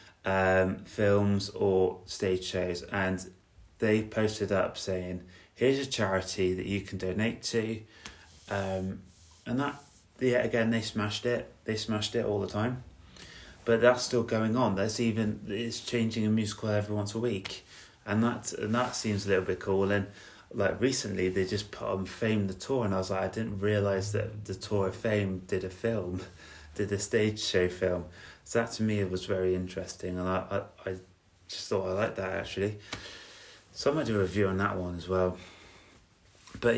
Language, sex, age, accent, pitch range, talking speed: English, male, 30-49, British, 95-110 Hz, 190 wpm